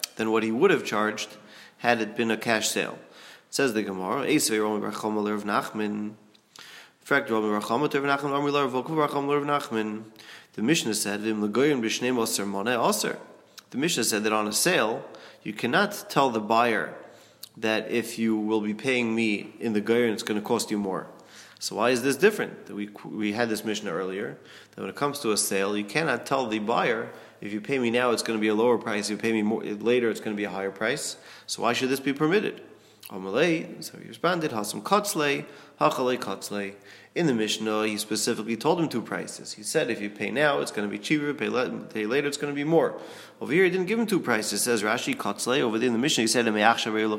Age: 30-49